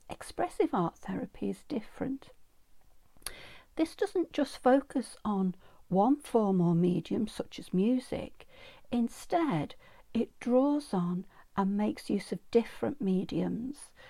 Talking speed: 115 wpm